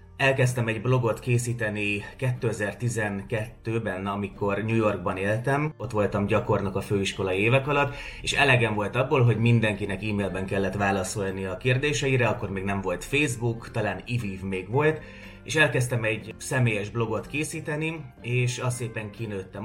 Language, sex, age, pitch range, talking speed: Hungarian, male, 30-49, 100-120 Hz, 140 wpm